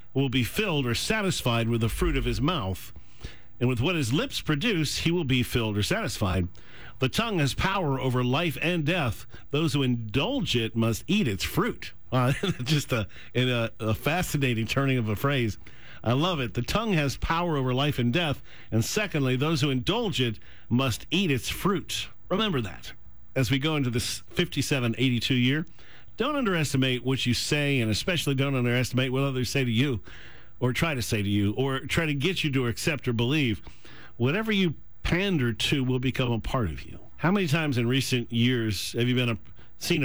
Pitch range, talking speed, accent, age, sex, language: 120-150 Hz, 195 wpm, American, 50-69, male, English